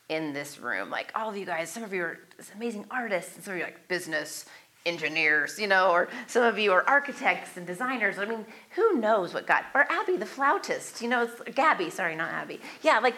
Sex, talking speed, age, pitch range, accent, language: female, 230 wpm, 30-49, 170-235 Hz, American, English